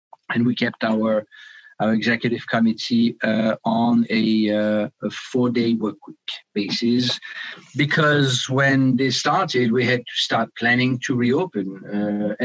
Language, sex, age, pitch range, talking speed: English, male, 50-69, 115-140 Hz, 140 wpm